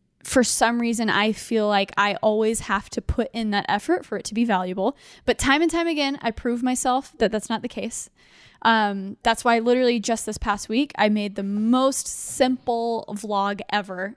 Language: English